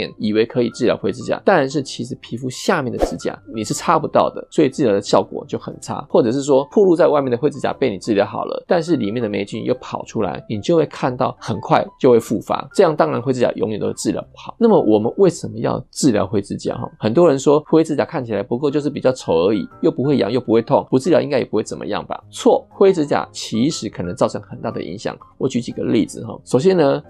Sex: male